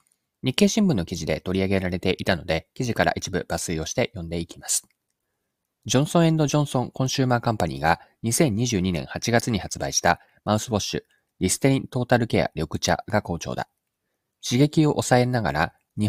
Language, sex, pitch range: Japanese, male, 90-130 Hz